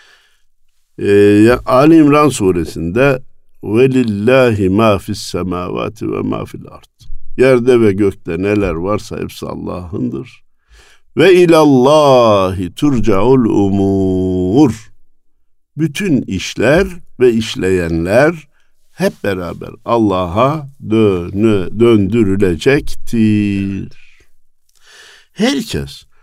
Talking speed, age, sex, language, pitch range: 75 wpm, 60-79, male, Turkish, 90-125 Hz